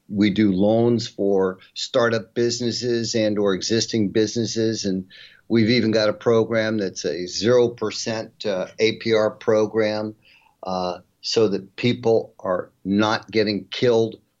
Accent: American